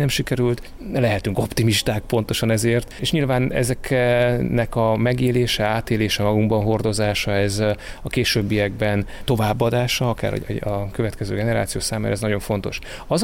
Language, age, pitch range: Hungarian, 30-49, 100-115 Hz